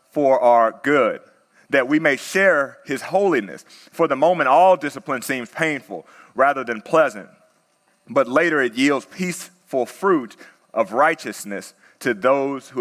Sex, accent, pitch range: male, American, 135-165 Hz